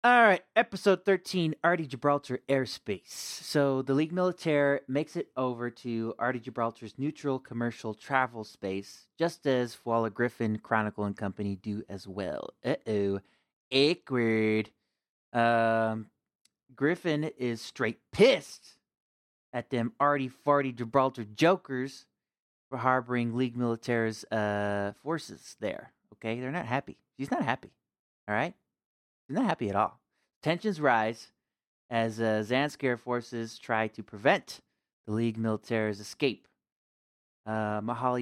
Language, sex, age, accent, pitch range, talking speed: English, male, 30-49, American, 105-130 Hz, 120 wpm